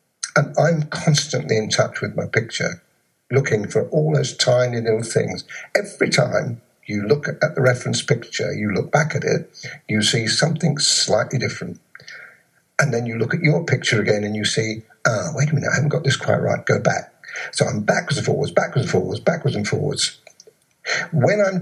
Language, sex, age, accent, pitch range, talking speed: English, male, 60-79, British, 115-150 Hz, 190 wpm